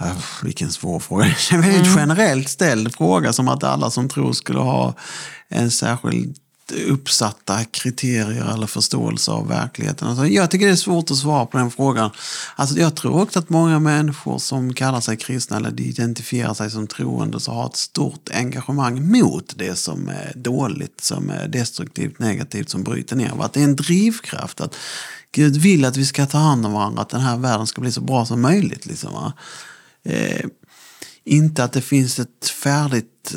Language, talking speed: Swedish, 185 wpm